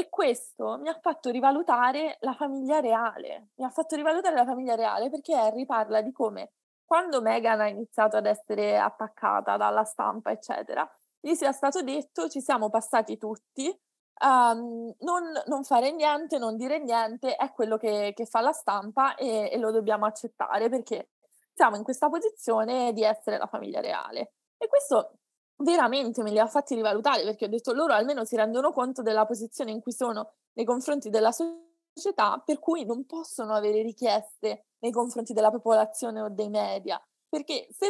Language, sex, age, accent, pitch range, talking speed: Italian, female, 20-39, native, 220-290 Hz, 170 wpm